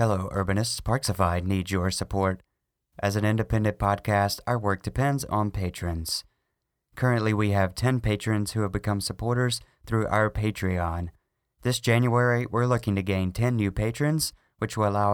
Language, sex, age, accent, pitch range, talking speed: English, male, 30-49, American, 100-120 Hz, 155 wpm